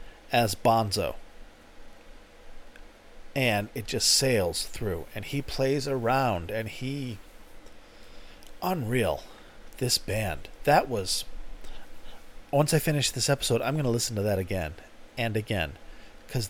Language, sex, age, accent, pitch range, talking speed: English, male, 40-59, American, 105-135 Hz, 120 wpm